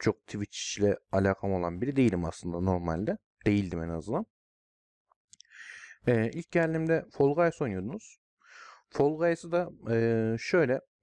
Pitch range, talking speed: 105-150 Hz, 125 wpm